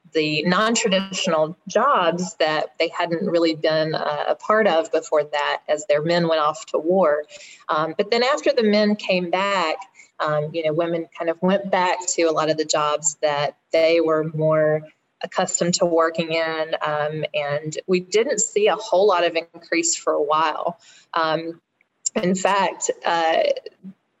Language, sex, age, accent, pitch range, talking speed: English, female, 20-39, American, 160-195 Hz, 165 wpm